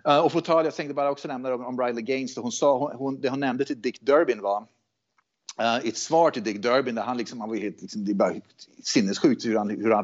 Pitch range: 110-145 Hz